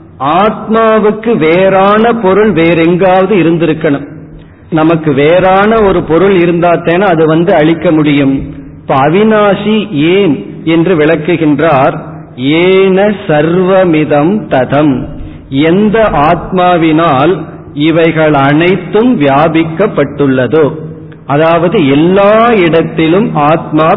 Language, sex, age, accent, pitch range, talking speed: Tamil, male, 40-59, native, 150-185 Hz, 75 wpm